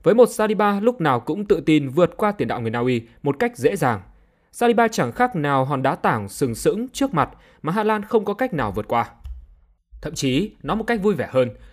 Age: 20-39